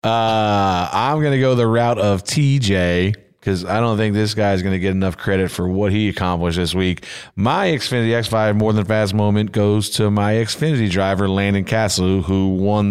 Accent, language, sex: American, English, male